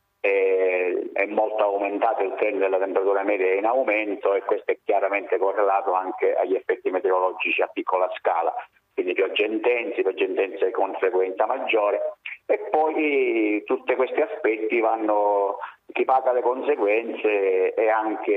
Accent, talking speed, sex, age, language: native, 135 wpm, male, 50-69, Italian